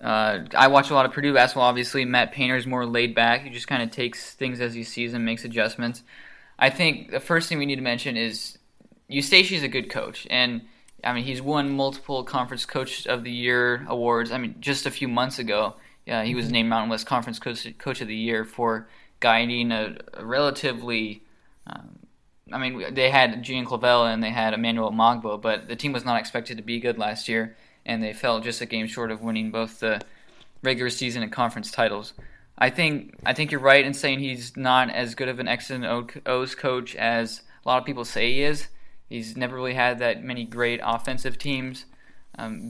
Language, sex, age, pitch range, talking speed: English, male, 20-39, 115-130 Hz, 215 wpm